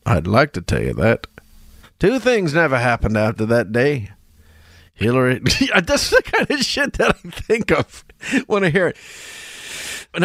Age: 40-59